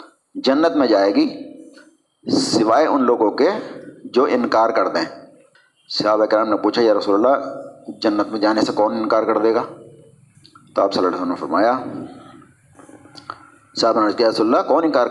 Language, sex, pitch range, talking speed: Urdu, male, 115-165 Hz, 155 wpm